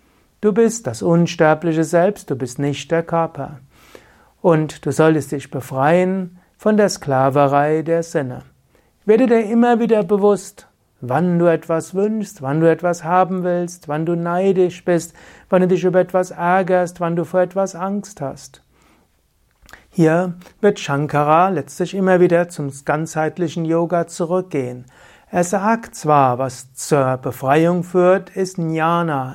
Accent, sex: German, male